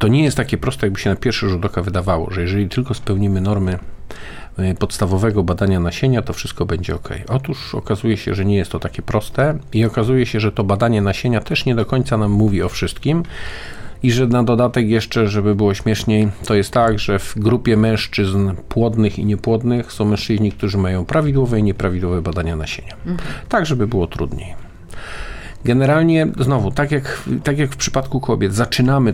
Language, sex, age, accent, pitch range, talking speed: Polish, male, 50-69, native, 100-130 Hz, 185 wpm